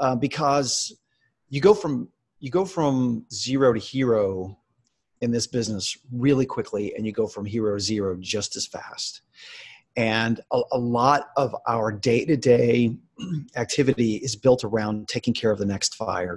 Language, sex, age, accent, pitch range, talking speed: English, male, 40-59, American, 110-135 Hz, 150 wpm